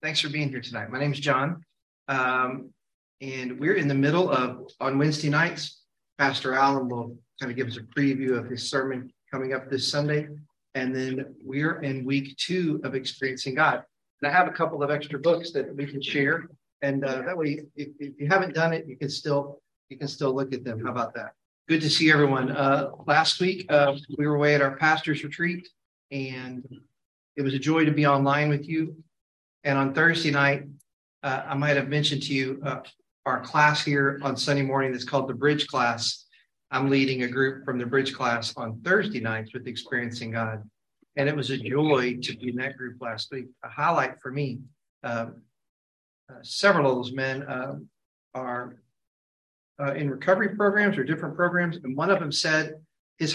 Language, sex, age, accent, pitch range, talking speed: English, male, 40-59, American, 130-150 Hz, 200 wpm